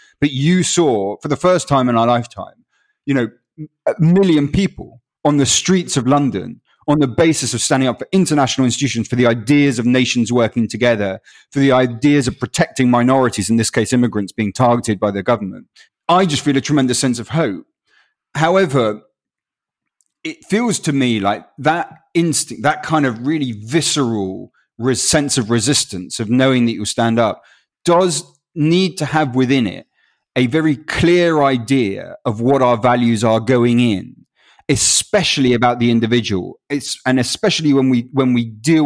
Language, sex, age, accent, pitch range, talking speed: English, male, 30-49, British, 120-150 Hz, 170 wpm